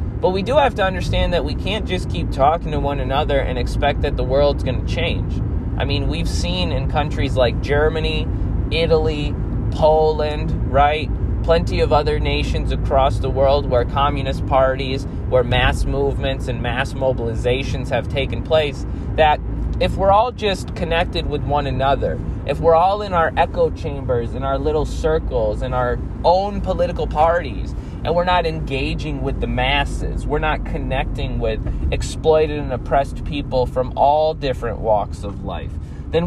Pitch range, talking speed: 100-155 Hz, 165 wpm